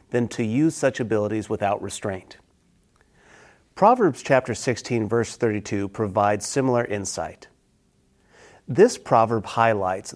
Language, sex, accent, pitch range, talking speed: English, male, American, 110-140 Hz, 105 wpm